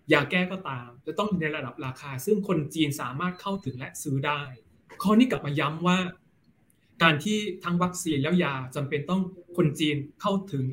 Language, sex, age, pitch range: Thai, male, 20-39, 145-185 Hz